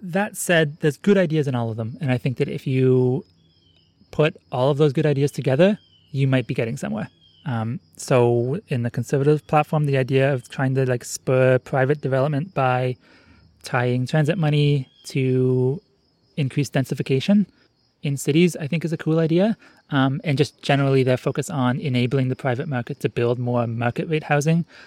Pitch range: 125-150 Hz